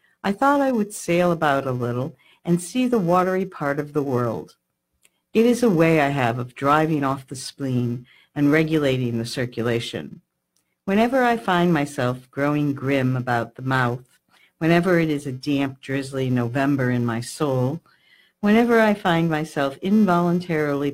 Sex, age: female, 60-79